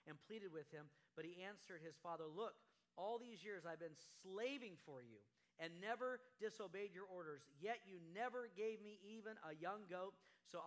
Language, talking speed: English, 185 wpm